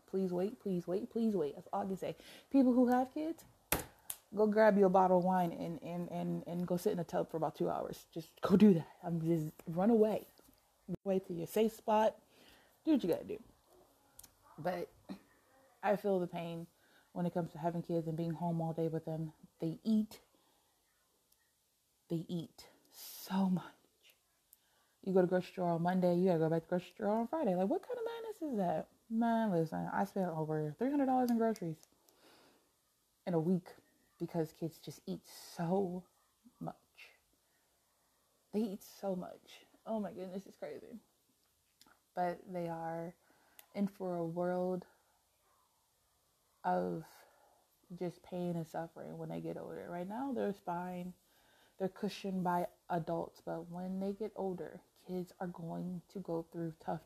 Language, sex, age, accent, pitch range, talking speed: English, female, 20-39, American, 170-205 Hz, 170 wpm